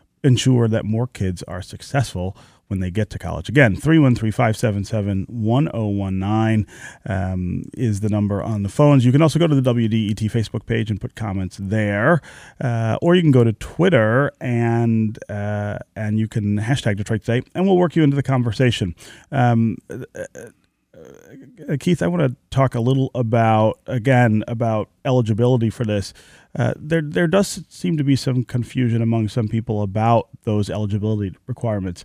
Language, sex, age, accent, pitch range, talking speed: English, male, 30-49, American, 105-130 Hz, 165 wpm